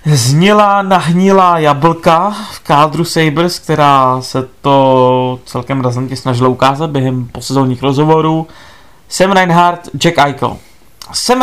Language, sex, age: Czech, male, 30-49